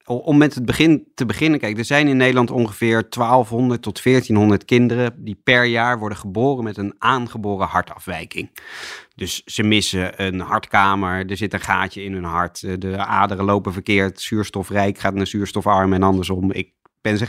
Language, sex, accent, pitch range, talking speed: Dutch, male, Dutch, 100-125 Hz, 170 wpm